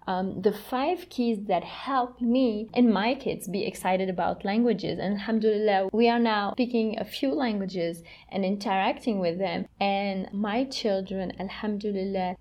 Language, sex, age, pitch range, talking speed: Arabic, female, 20-39, 185-235 Hz, 150 wpm